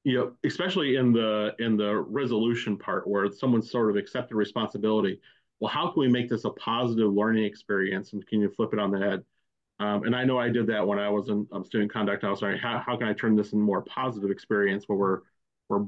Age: 40-59